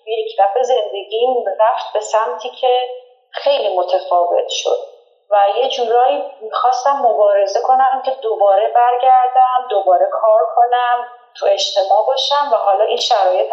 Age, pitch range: 30-49, 210-285 Hz